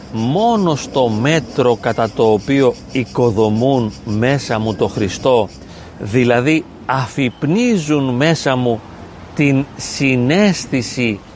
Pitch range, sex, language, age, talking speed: 110-145 Hz, male, Greek, 40-59, 90 wpm